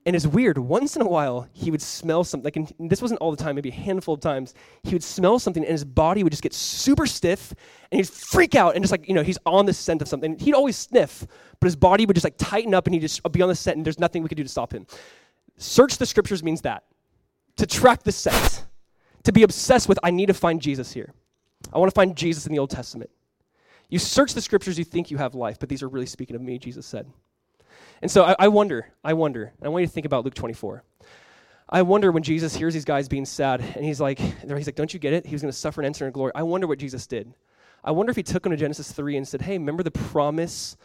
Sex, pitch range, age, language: male, 145-185 Hz, 20-39, English